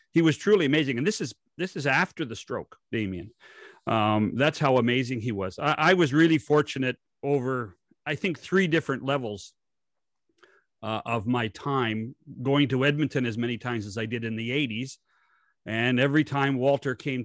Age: 40-59